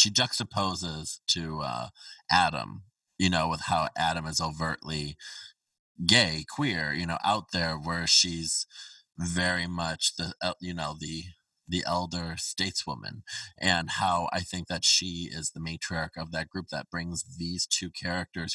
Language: English